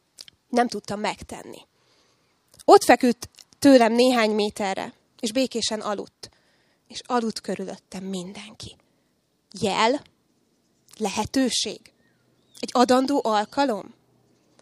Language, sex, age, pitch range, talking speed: Hungarian, female, 20-39, 205-245 Hz, 80 wpm